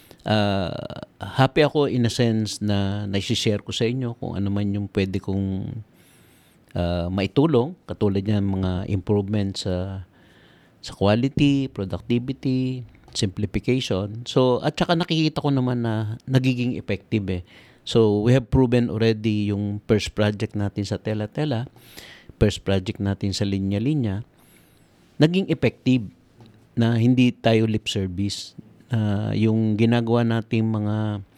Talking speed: 130 wpm